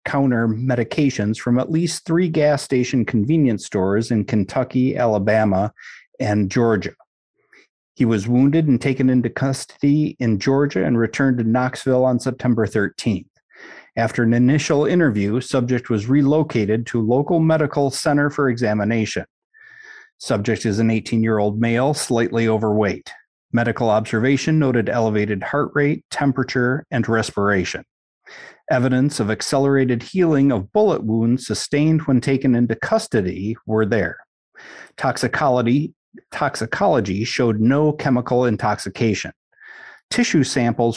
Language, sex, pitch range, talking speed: English, male, 115-145 Hz, 125 wpm